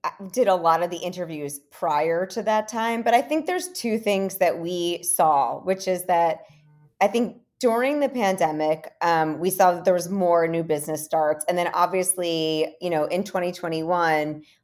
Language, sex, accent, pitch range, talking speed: English, female, American, 160-190 Hz, 185 wpm